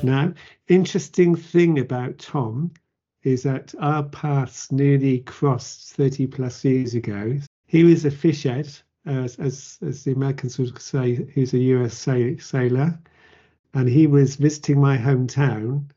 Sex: male